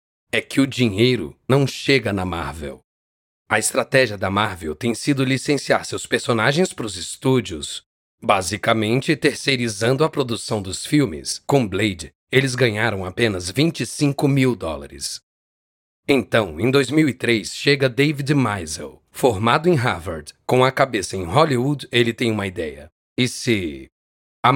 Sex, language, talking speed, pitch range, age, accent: male, Portuguese, 135 wpm, 100-135 Hz, 40-59, Brazilian